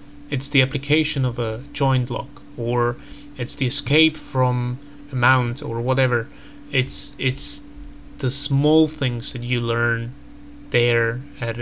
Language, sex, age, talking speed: Slovak, male, 30-49, 135 wpm